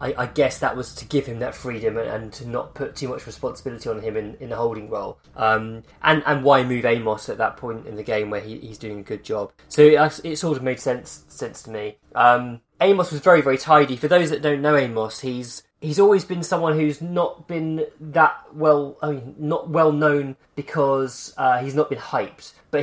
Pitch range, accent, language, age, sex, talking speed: 115-150 Hz, British, English, 20-39, male, 230 wpm